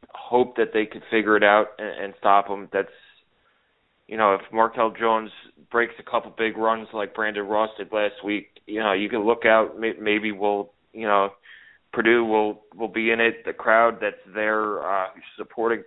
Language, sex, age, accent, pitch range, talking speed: English, male, 20-39, American, 105-115 Hz, 185 wpm